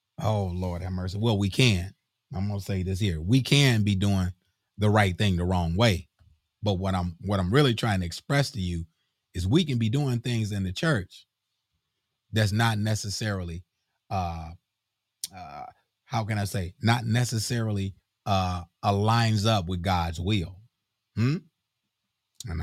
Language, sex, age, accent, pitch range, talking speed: English, male, 30-49, American, 100-155 Hz, 165 wpm